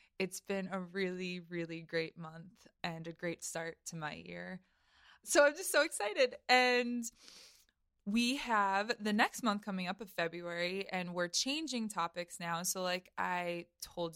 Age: 20-39